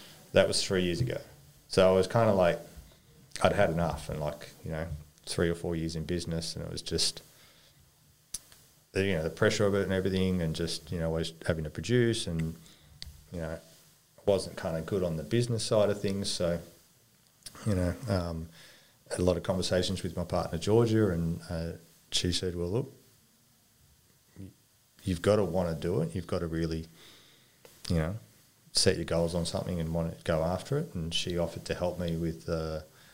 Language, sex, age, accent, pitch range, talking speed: English, male, 30-49, Australian, 80-100 Hz, 195 wpm